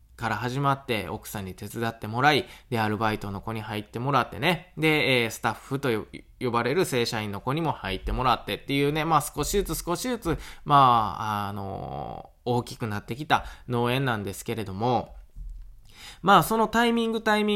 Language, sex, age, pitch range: Japanese, male, 20-39, 110-160 Hz